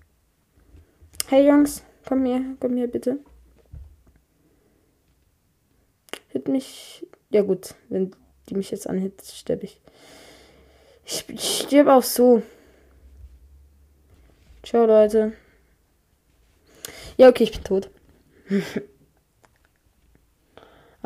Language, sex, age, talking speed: German, female, 20-39, 85 wpm